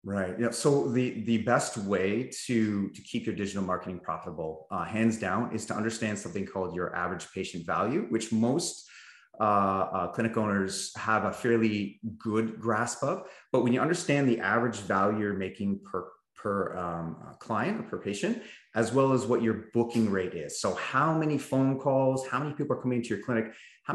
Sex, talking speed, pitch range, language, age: male, 190 wpm, 100-130 Hz, English, 30-49